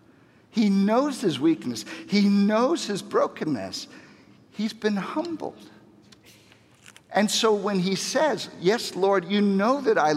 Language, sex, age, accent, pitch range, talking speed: English, male, 50-69, American, 150-220 Hz, 130 wpm